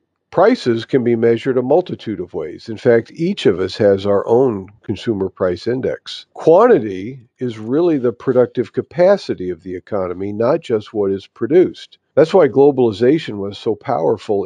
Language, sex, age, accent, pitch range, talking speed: English, male, 50-69, American, 100-130 Hz, 160 wpm